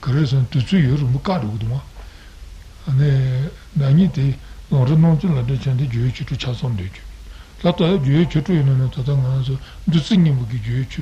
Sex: male